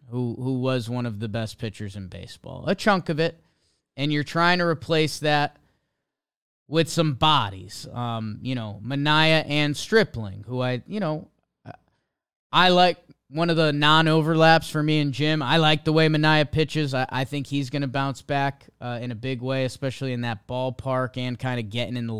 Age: 20-39